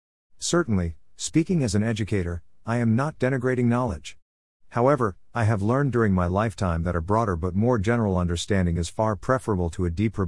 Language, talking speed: English, 175 wpm